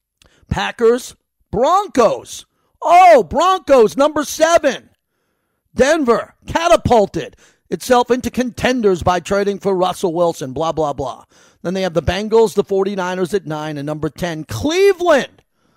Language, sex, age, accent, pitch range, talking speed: English, male, 50-69, American, 180-255 Hz, 120 wpm